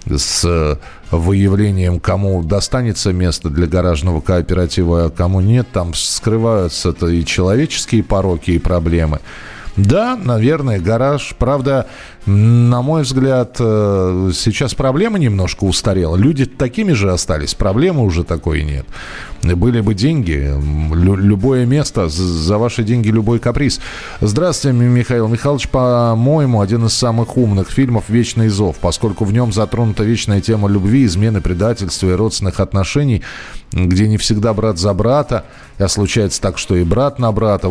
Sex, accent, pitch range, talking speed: male, native, 90-120 Hz, 135 wpm